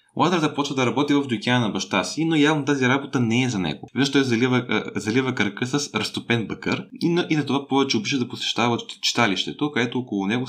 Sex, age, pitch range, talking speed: male, 20-39, 105-135 Hz, 210 wpm